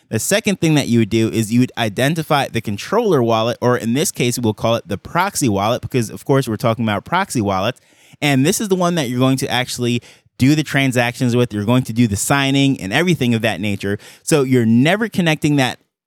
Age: 20-39